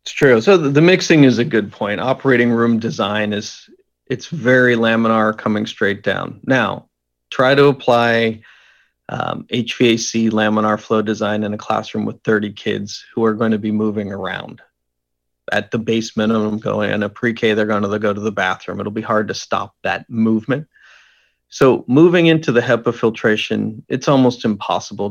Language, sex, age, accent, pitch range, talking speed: English, male, 40-59, American, 105-120 Hz, 170 wpm